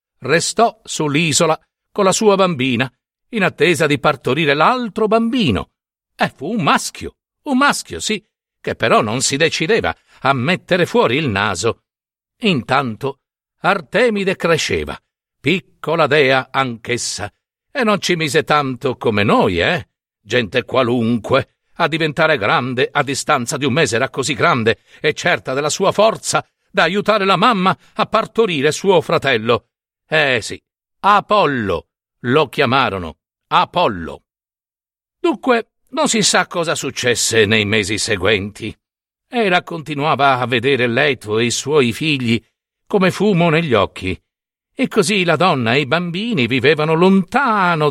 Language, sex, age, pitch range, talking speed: Italian, male, 60-79, 130-195 Hz, 135 wpm